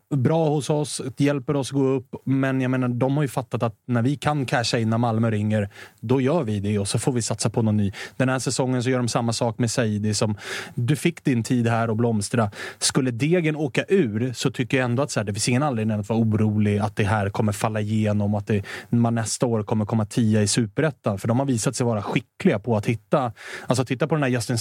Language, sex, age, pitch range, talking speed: Swedish, male, 30-49, 115-140 Hz, 250 wpm